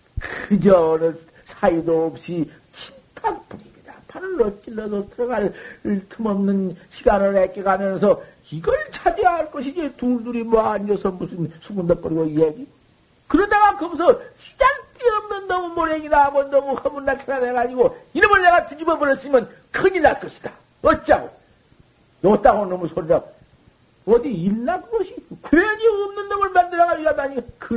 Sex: male